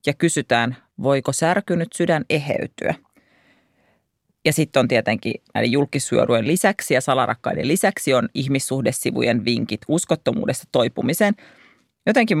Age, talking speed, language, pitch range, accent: 40-59, 105 wpm, Finnish, 140-195 Hz, native